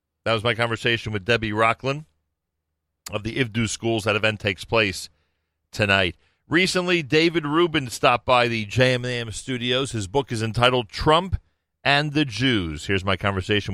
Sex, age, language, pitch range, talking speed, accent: male, 40-59, English, 85-115 Hz, 155 wpm, American